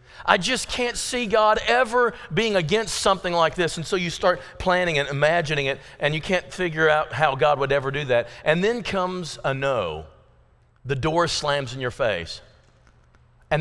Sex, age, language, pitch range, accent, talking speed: male, 40-59, English, 125-170 Hz, American, 185 wpm